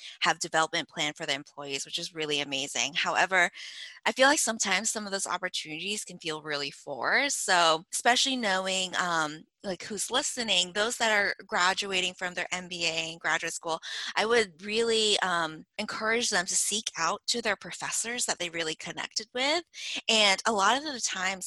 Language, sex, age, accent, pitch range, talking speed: English, female, 20-39, American, 165-210 Hz, 175 wpm